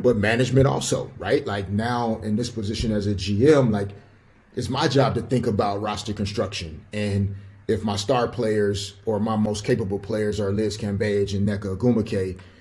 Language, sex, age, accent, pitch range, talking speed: English, male, 30-49, American, 100-120 Hz, 175 wpm